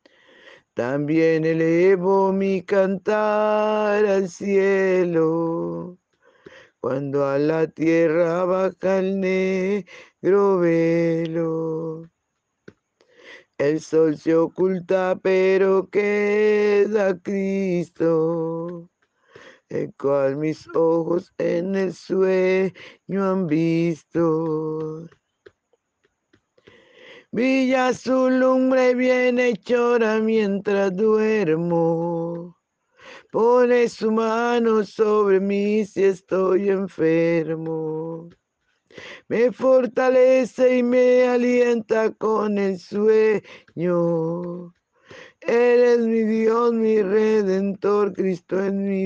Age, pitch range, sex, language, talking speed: 50-69, 165-225 Hz, male, Spanish, 75 wpm